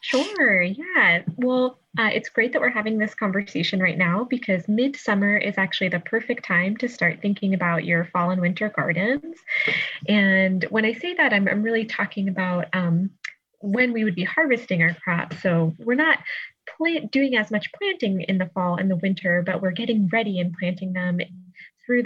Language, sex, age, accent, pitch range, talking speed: English, female, 20-39, American, 180-220 Hz, 185 wpm